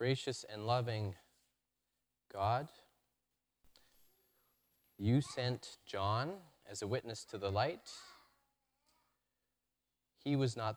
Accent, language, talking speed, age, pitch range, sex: American, English, 90 wpm, 30-49, 85-125 Hz, male